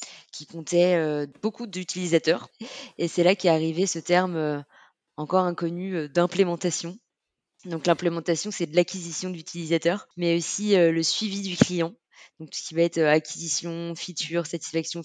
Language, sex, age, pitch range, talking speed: French, female, 20-39, 155-180 Hz, 160 wpm